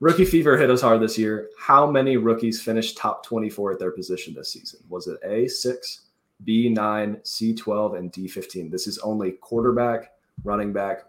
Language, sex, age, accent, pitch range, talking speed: English, male, 20-39, American, 95-125 Hz, 190 wpm